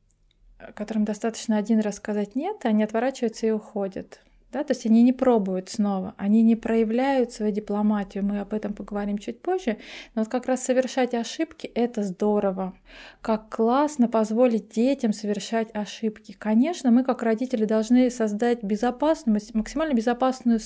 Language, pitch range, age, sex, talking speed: English, 210-245 Hz, 20-39, female, 150 wpm